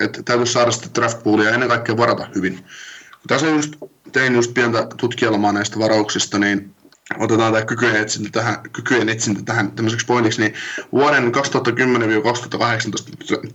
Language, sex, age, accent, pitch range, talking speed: Finnish, male, 20-39, native, 110-120 Hz, 140 wpm